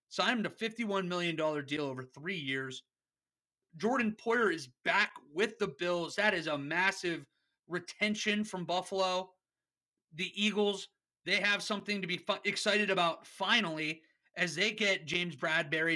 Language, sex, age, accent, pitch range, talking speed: English, male, 30-49, American, 155-195 Hz, 140 wpm